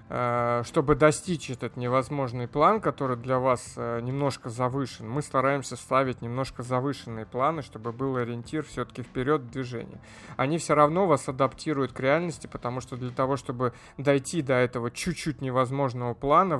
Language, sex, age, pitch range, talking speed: Russian, male, 20-39, 120-145 Hz, 145 wpm